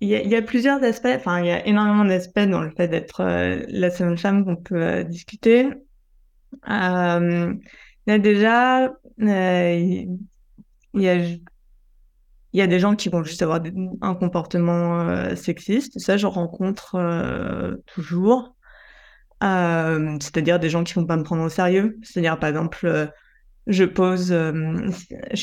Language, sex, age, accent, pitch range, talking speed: French, female, 20-39, French, 170-210 Hz, 170 wpm